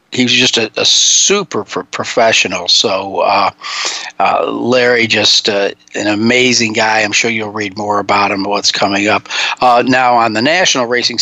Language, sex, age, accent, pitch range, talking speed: English, male, 50-69, American, 115-130 Hz, 175 wpm